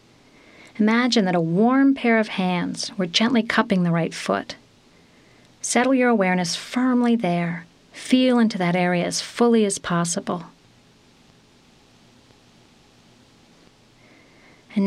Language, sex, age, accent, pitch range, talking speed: English, female, 40-59, American, 180-225 Hz, 110 wpm